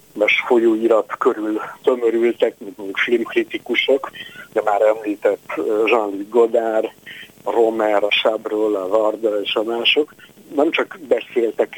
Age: 50-69